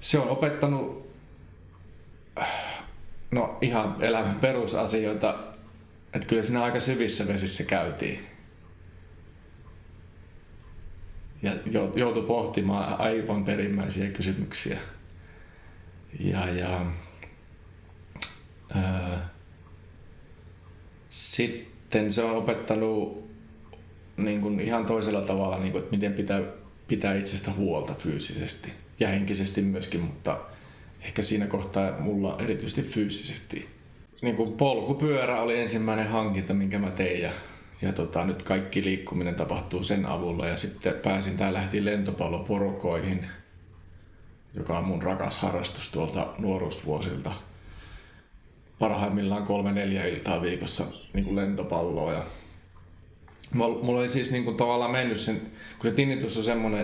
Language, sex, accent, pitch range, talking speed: Finnish, male, native, 90-110 Hz, 95 wpm